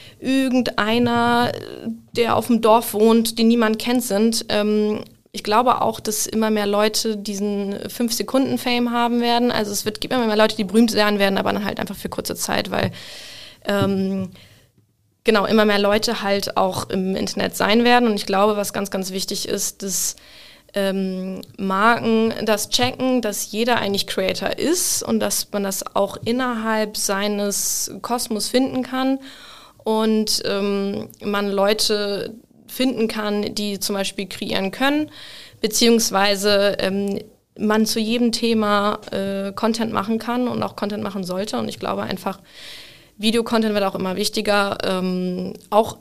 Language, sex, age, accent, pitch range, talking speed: German, female, 20-39, German, 200-230 Hz, 155 wpm